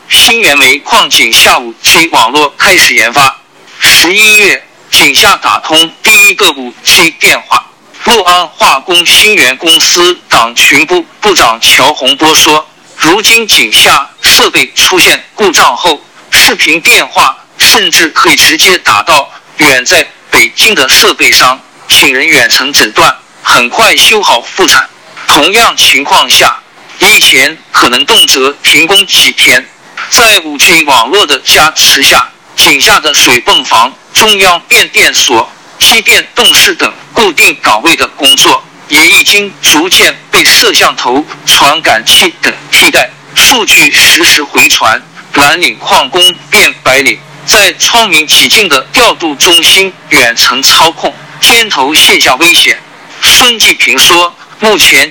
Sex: male